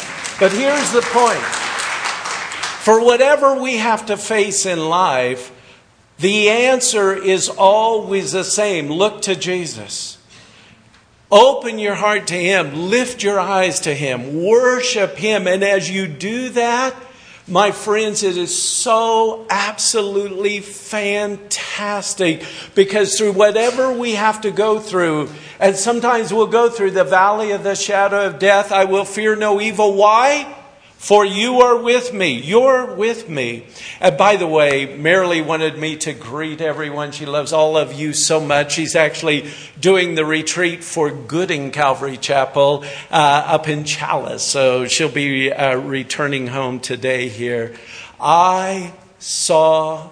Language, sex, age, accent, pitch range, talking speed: English, male, 50-69, American, 155-215 Hz, 145 wpm